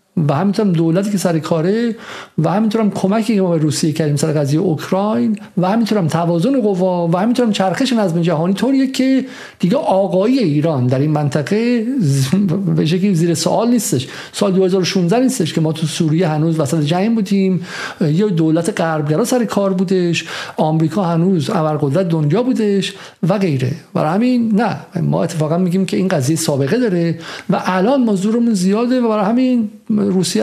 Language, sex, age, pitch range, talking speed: Persian, male, 50-69, 155-210 Hz, 160 wpm